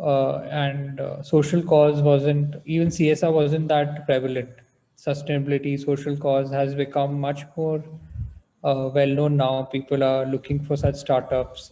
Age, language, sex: 20-39, English, male